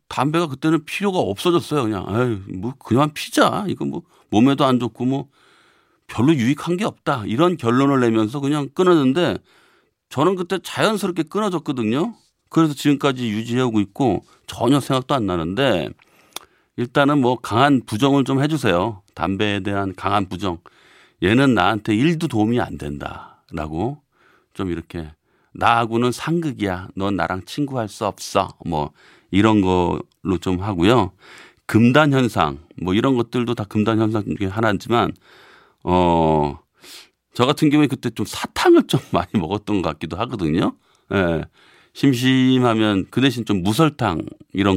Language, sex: Korean, male